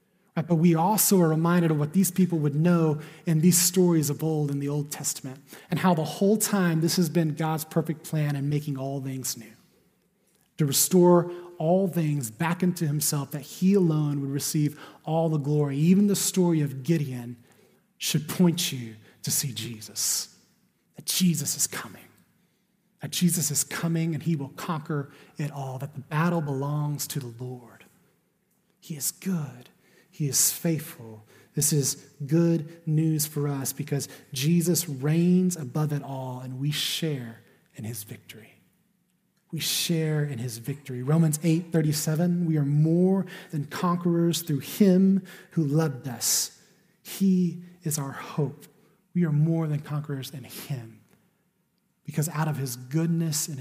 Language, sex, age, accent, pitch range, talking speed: English, male, 30-49, American, 140-175 Hz, 160 wpm